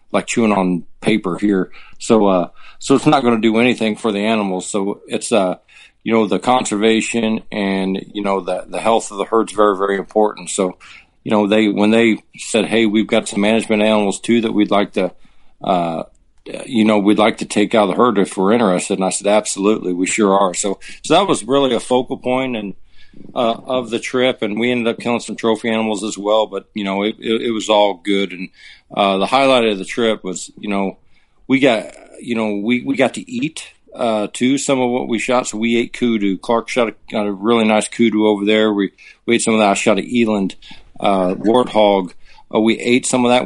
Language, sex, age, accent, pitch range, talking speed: English, male, 50-69, American, 100-115 Hz, 230 wpm